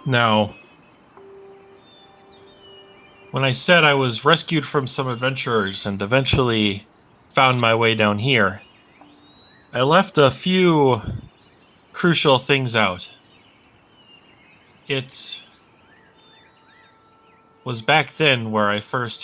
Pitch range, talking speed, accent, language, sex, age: 105-135 Hz, 95 wpm, American, English, male, 30-49